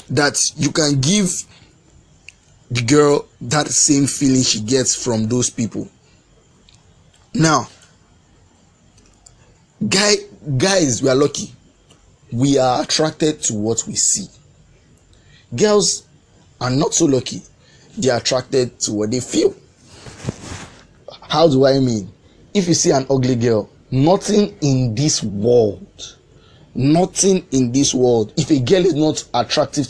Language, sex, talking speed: English, male, 125 wpm